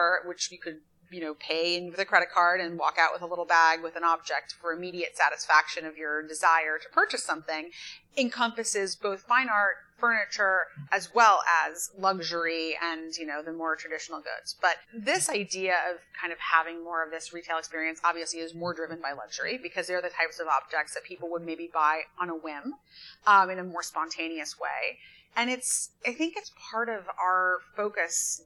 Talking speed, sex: 195 wpm, female